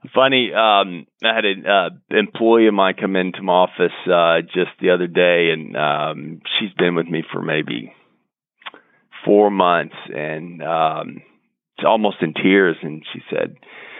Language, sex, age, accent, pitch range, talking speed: English, male, 40-59, American, 85-105 Hz, 160 wpm